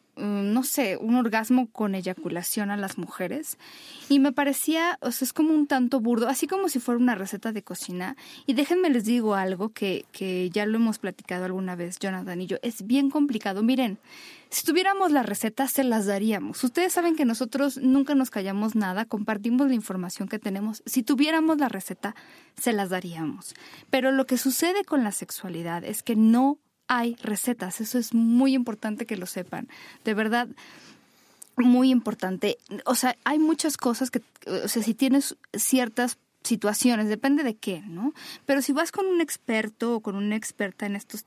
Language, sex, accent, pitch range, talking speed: Spanish, female, Mexican, 210-275 Hz, 180 wpm